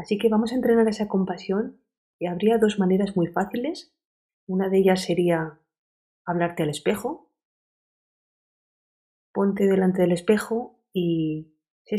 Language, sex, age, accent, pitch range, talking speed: Spanish, female, 30-49, Spanish, 160-205 Hz, 130 wpm